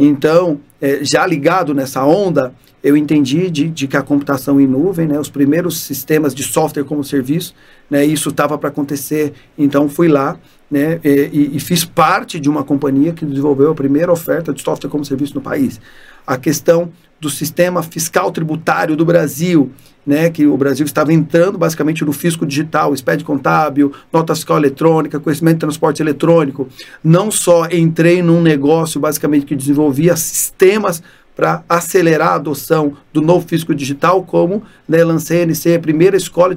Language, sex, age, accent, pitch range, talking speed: Portuguese, male, 40-59, Brazilian, 145-175 Hz, 165 wpm